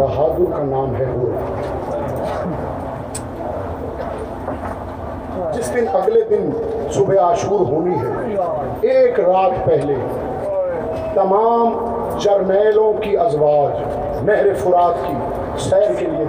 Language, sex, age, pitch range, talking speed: Urdu, male, 50-69, 180-250 Hz, 90 wpm